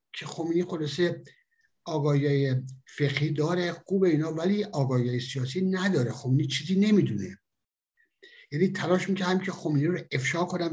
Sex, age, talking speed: male, 60-79, 130 wpm